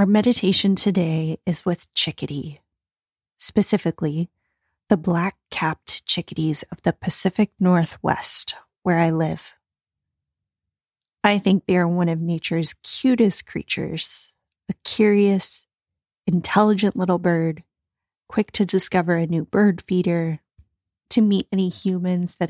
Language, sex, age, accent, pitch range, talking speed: English, female, 30-49, American, 165-195 Hz, 115 wpm